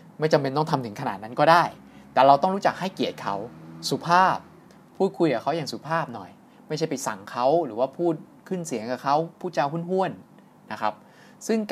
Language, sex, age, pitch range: Thai, male, 20-39, 120-165 Hz